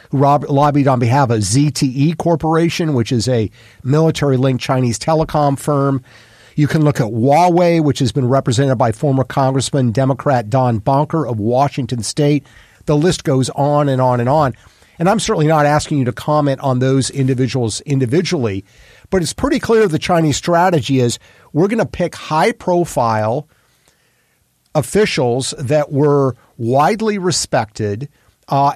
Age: 50-69